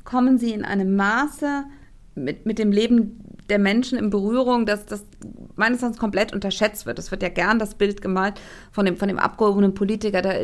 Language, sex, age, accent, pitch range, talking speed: German, female, 50-69, German, 195-235 Hz, 195 wpm